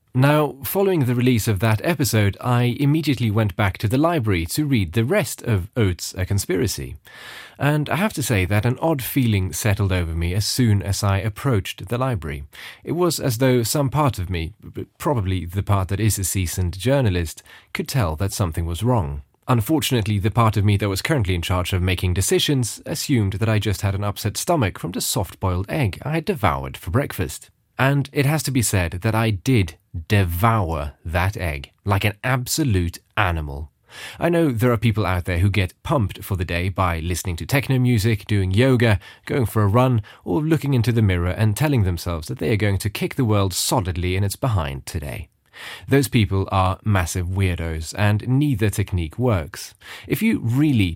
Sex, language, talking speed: male, English, 195 wpm